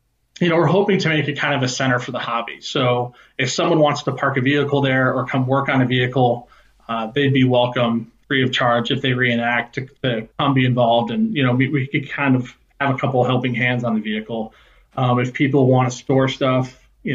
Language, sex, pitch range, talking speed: English, male, 125-140 Hz, 240 wpm